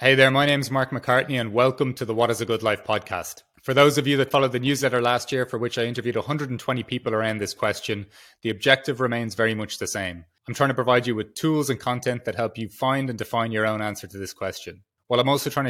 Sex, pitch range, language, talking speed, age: male, 110-130 Hz, English, 255 wpm, 30-49